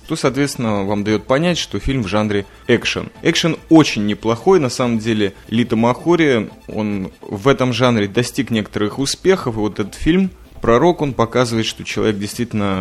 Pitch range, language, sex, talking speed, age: 105-130 Hz, Russian, male, 165 wpm, 20-39